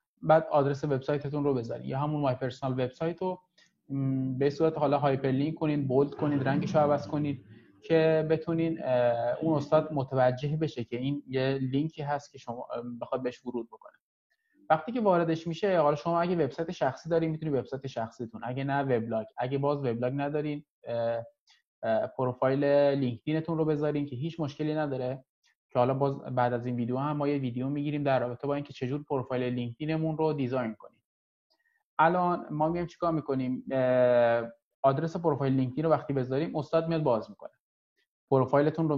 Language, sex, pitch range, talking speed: Persian, male, 130-155 Hz, 160 wpm